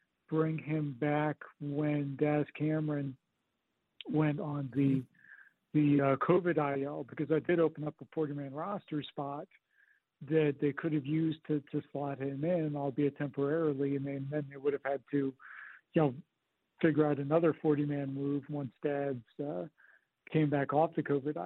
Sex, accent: male, American